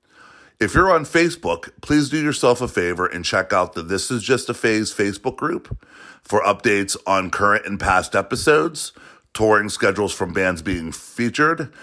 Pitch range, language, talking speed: 90-120 Hz, English, 165 wpm